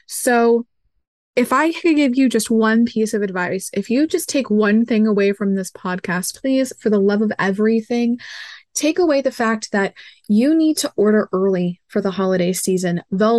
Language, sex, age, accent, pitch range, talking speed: English, female, 20-39, American, 195-250 Hz, 190 wpm